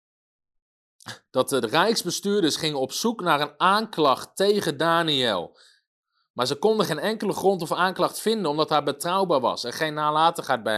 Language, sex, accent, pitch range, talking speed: Dutch, male, Dutch, 145-195 Hz, 155 wpm